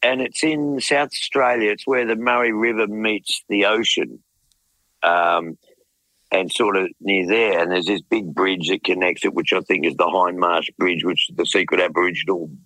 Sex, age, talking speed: male, 50-69, 185 wpm